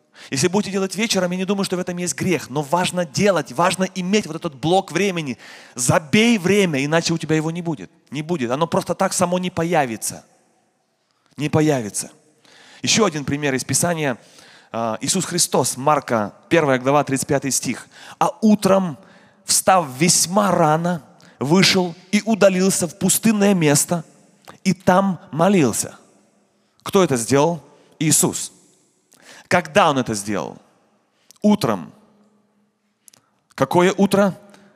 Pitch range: 140-190 Hz